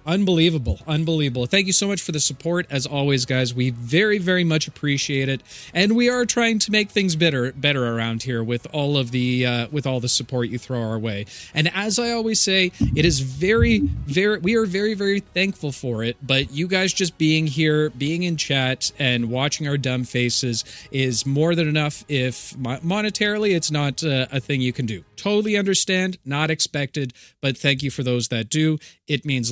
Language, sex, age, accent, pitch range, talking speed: English, male, 40-59, American, 130-190 Hz, 200 wpm